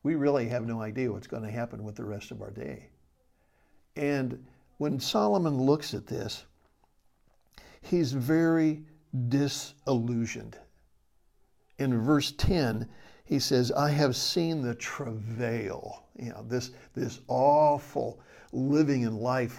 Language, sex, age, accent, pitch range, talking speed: English, male, 60-79, American, 115-140 Hz, 130 wpm